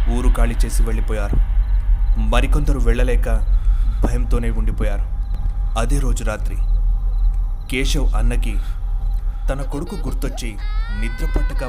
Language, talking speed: Telugu, 85 wpm